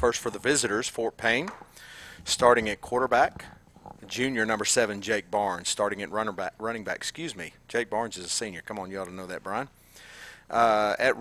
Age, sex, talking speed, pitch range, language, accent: 40-59, male, 200 wpm, 100-120 Hz, English, American